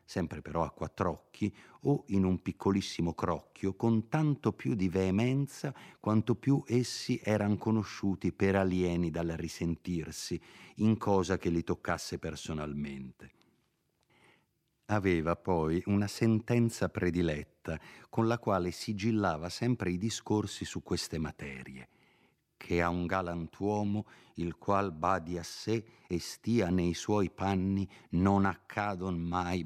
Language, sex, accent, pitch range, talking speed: Italian, male, native, 85-110 Hz, 125 wpm